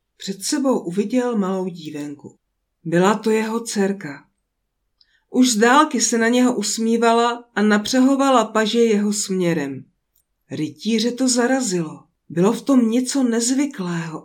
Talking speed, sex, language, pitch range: 120 wpm, female, Czech, 190-245 Hz